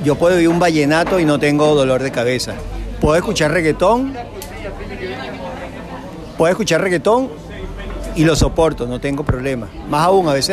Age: 50-69